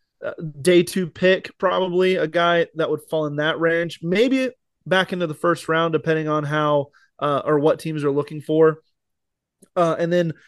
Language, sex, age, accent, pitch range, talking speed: English, male, 20-39, American, 150-170 Hz, 180 wpm